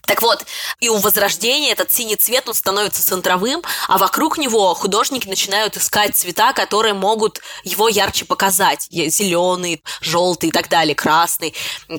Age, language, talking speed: 20-39, Russian, 145 wpm